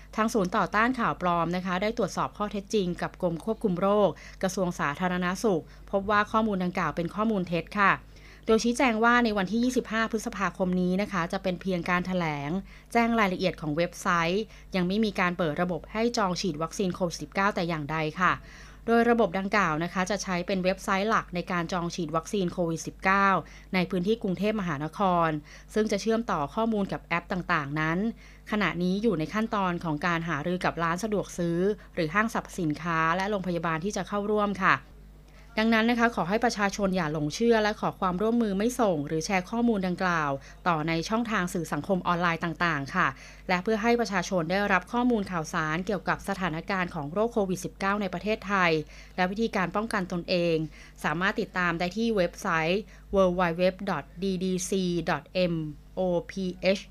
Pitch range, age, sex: 170-210 Hz, 20-39, female